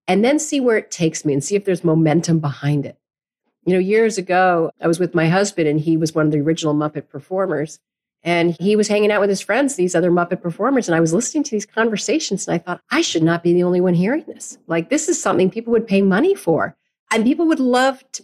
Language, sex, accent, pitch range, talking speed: English, female, American, 165-225 Hz, 255 wpm